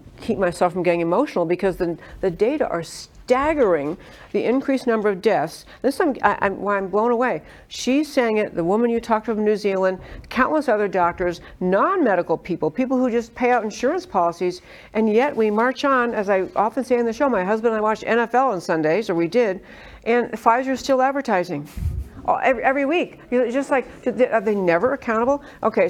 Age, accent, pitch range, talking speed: 60-79, American, 175-230 Hz, 195 wpm